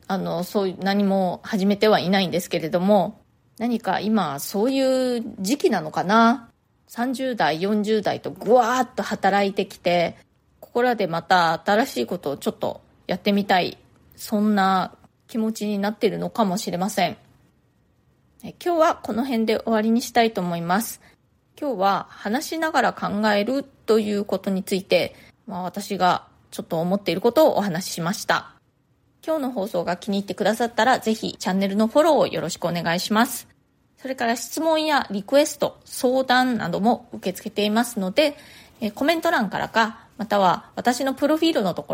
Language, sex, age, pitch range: Japanese, female, 20-39, 190-245 Hz